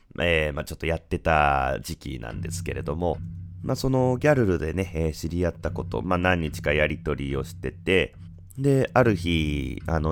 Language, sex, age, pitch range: Japanese, male, 30-49, 80-105 Hz